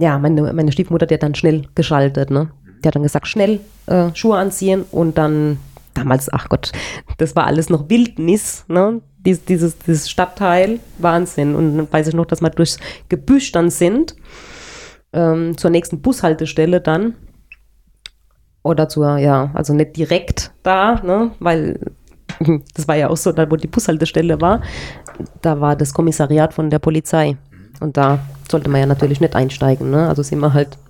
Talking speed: 175 wpm